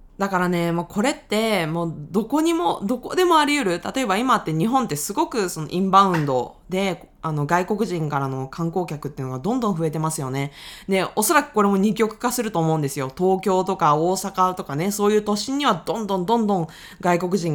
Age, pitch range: 20-39, 160-235 Hz